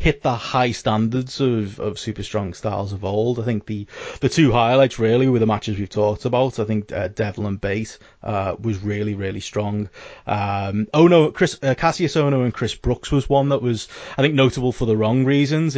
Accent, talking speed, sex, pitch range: British, 210 wpm, male, 105-130 Hz